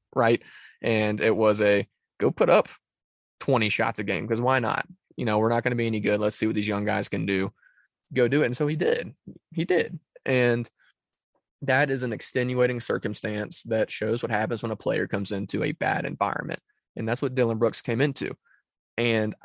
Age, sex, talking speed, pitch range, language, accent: 20-39, male, 205 wpm, 110-130 Hz, English, American